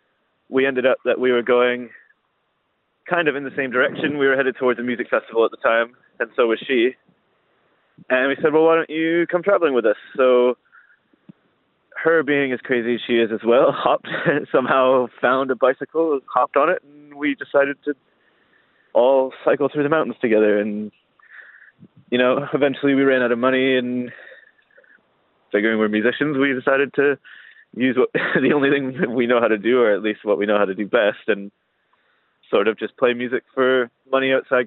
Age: 20-39